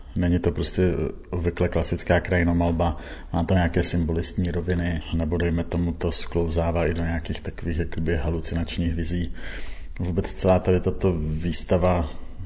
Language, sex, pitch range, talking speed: Czech, male, 85-90 Hz, 130 wpm